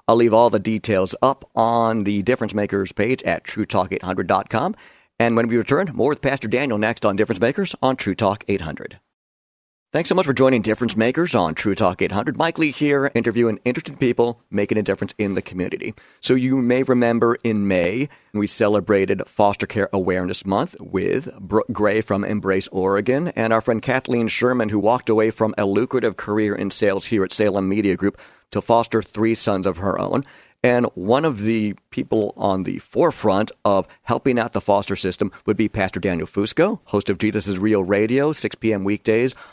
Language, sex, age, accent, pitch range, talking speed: English, male, 50-69, American, 100-125 Hz, 190 wpm